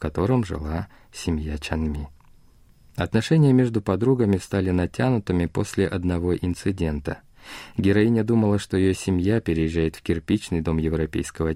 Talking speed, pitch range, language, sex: 120 wpm, 80-110 Hz, Russian, male